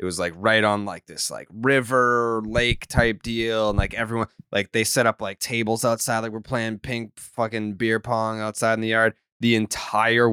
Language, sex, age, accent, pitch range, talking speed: English, male, 20-39, American, 100-125 Hz, 200 wpm